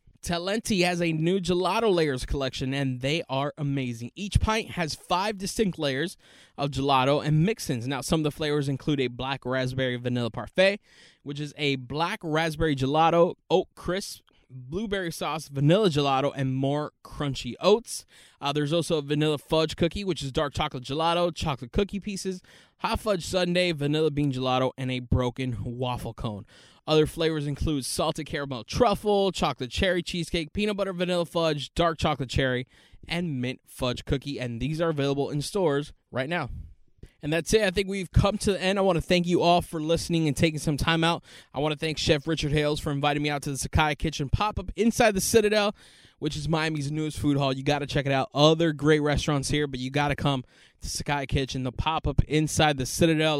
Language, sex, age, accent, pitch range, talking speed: English, male, 20-39, American, 135-170 Hz, 195 wpm